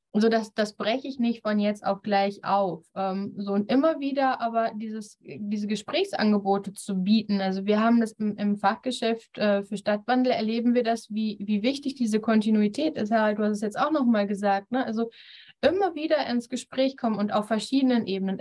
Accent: German